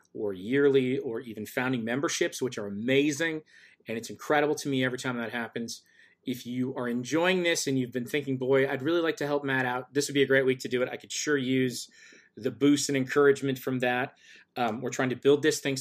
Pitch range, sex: 120-140 Hz, male